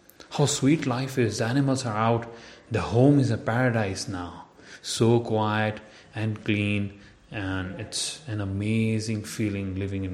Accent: Indian